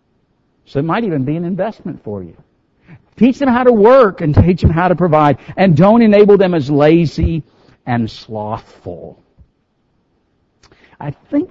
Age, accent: 60-79, American